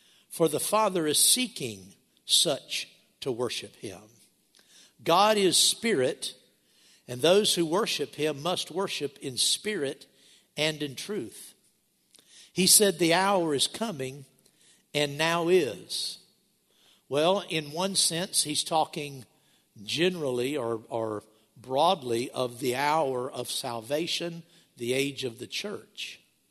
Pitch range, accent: 130-175 Hz, American